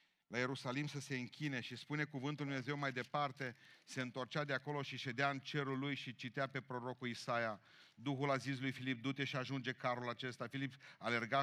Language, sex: Romanian, male